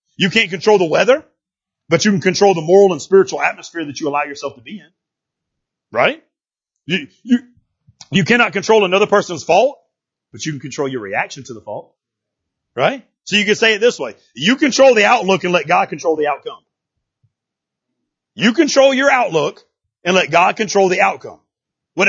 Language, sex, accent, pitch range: English, male, American, 170-245 Hz